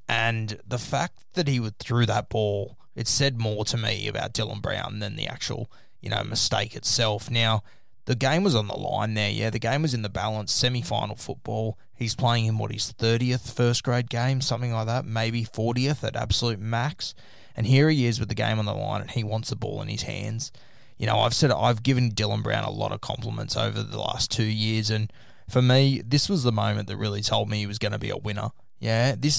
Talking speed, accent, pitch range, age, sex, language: 225 wpm, Australian, 110-125 Hz, 20-39, male, English